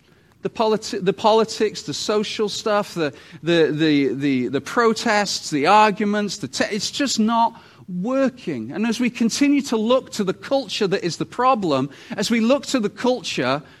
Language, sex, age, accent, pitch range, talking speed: English, male, 40-59, British, 155-215 Hz, 175 wpm